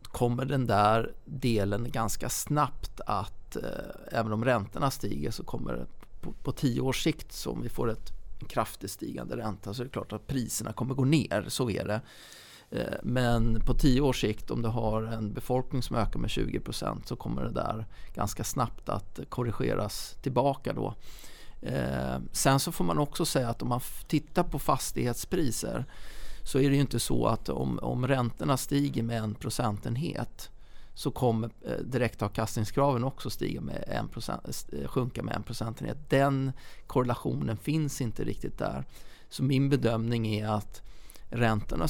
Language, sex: Swedish, male